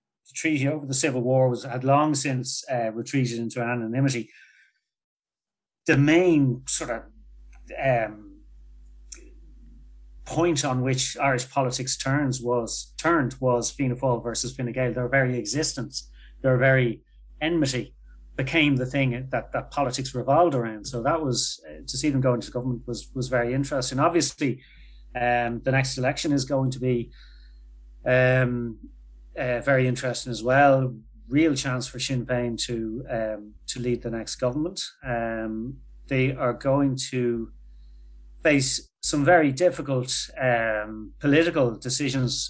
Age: 30-49